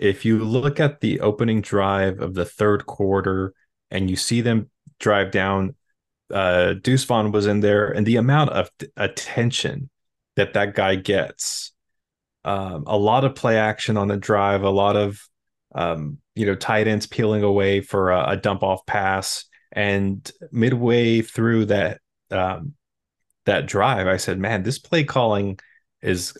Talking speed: 160 wpm